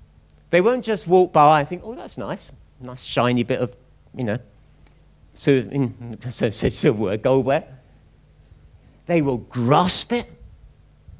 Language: English